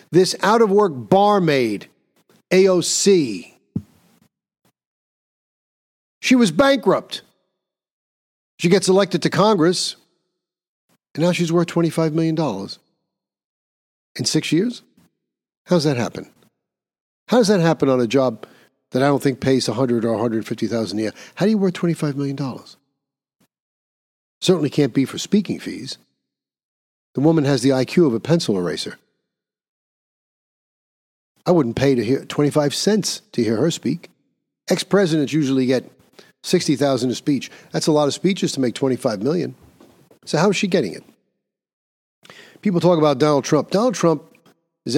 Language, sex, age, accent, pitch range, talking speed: English, male, 50-69, American, 130-175 Hz, 135 wpm